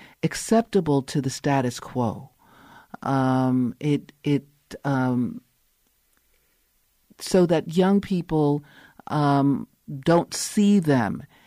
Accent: American